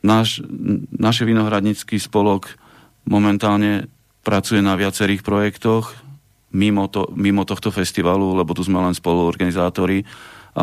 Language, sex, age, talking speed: Slovak, male, 40-59, 115 wpm